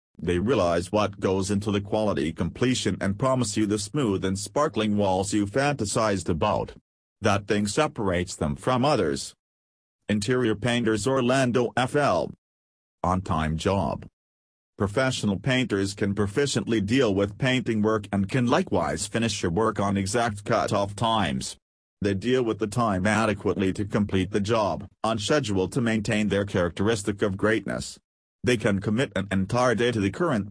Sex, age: male, 40-59